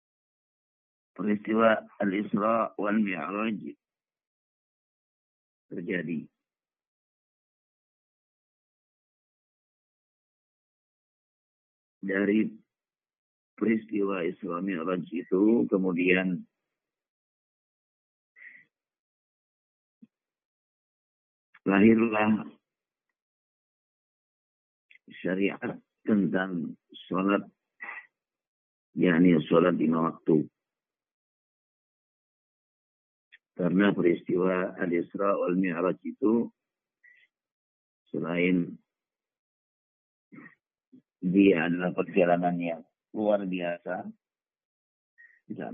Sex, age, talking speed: male, 50-69, 40 wpm